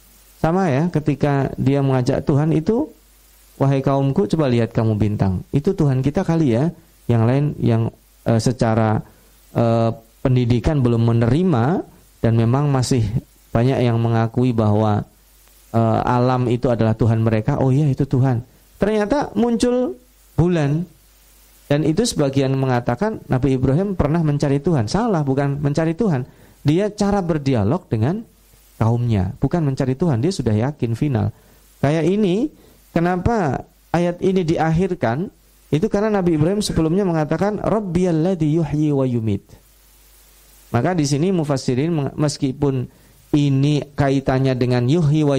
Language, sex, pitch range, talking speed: Indonesian, male, 115-155 Hz, 130 wpm